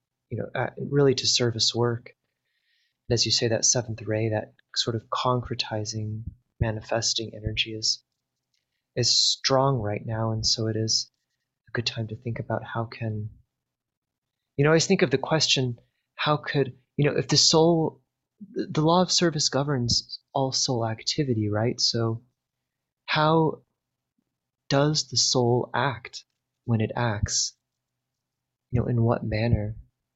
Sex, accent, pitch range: male, American, 110-125 Hz